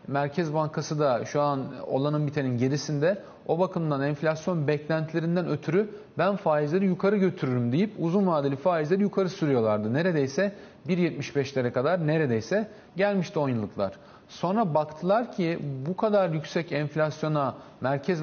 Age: 40-59